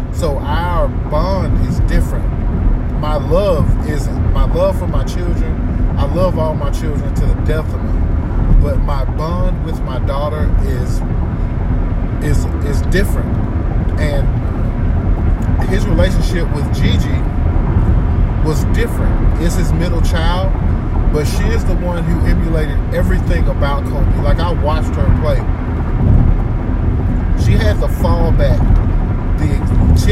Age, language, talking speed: 30-49, English, 130 wpm